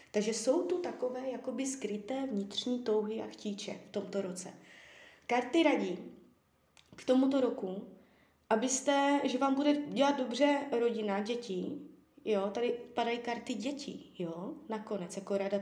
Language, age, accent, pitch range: Czech, 20-39, native, 210-270 Hz